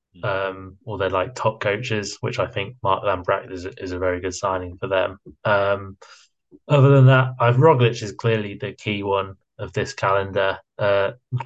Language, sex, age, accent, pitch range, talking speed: English, male, 20-39, British, 100-125 Hz, 185 wpm